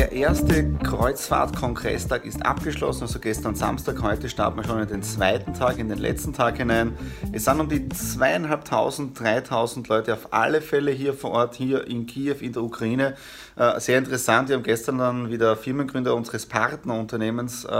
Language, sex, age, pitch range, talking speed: German, male, 30-49, 115-135 Hz, 170 wpm